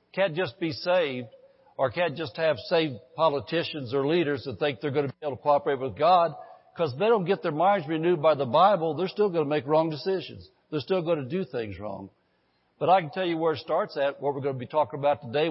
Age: 60-79